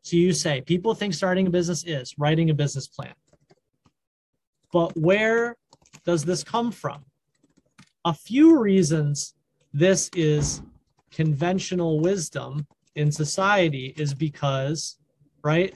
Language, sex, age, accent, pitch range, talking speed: English, male, 30-49, American, 150-200 Hz, 120 wpm